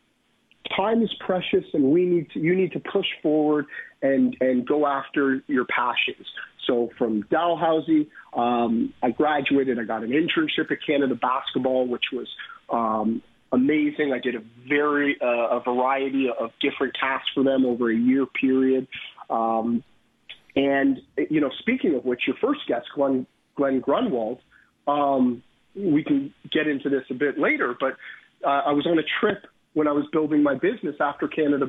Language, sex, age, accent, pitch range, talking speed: English, male, 40-59, American, 125-155 Hz, 165 wpm